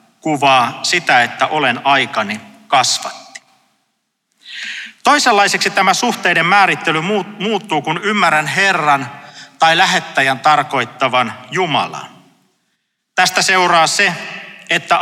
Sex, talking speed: male, 90 wpm